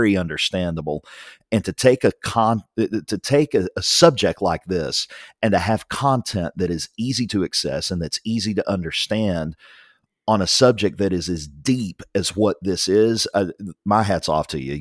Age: 40-59